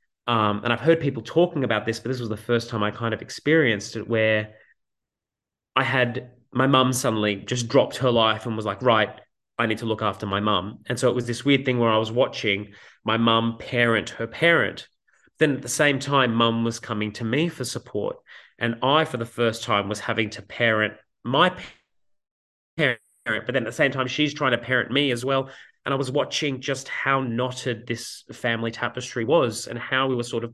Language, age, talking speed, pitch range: English, 30-49, 215 wpm, 110-130 Hz